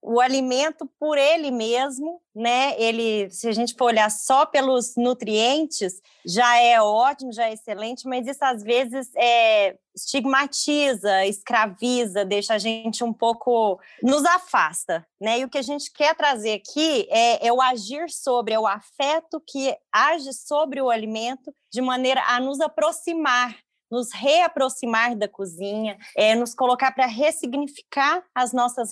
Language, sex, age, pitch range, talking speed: Portuguese, female, 20-39, 225-280 Hz, 150 wpm